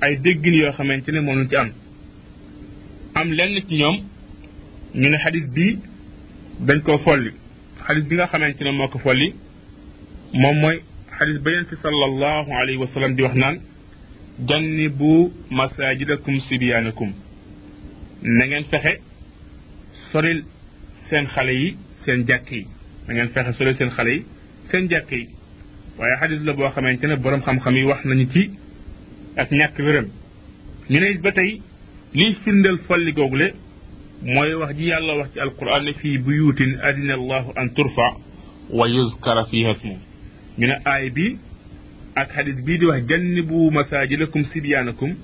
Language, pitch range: French, 120-155 Hz